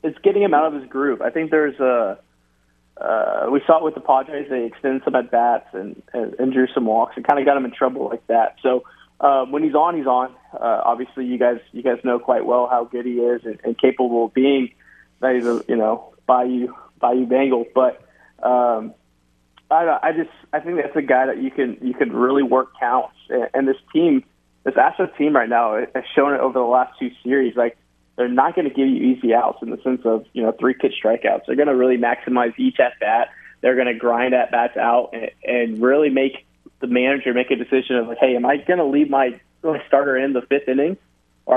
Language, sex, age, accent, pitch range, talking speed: English, male, 20-39, American, 120-140 Hz, 235 wpm